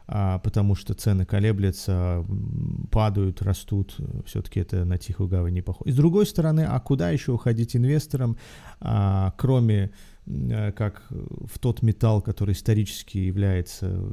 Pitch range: 95-115 Hz